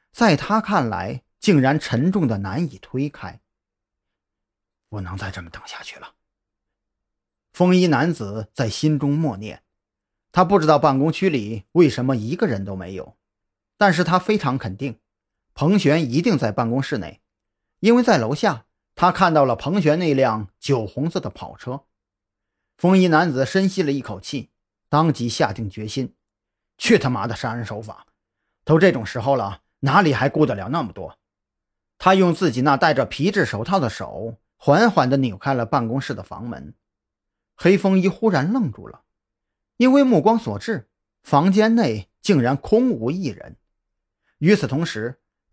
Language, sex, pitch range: Chinese, male, 105-170 Hz